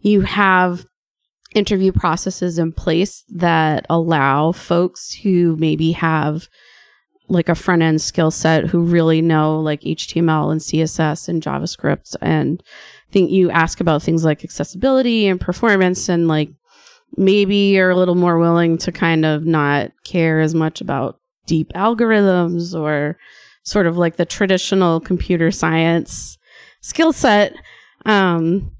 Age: 20-39